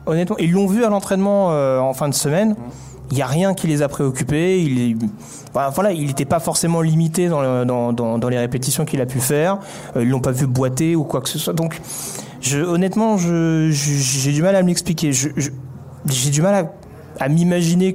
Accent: French